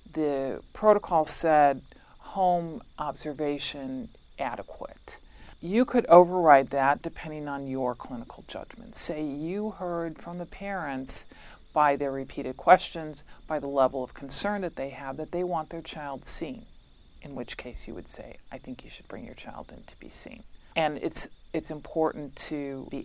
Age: 40-59